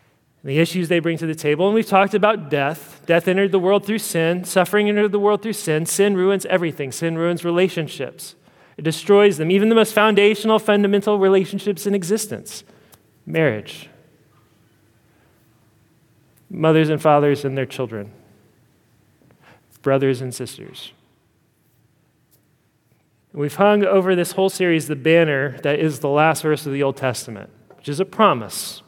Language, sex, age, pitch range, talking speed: English, male, 30-49, 145-190 Hz, 150 wpm